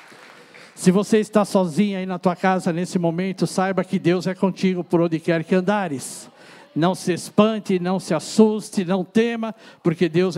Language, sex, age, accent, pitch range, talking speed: Portuguese, male, 60-79, Brazilian, 180-230 Hz, 175 wpm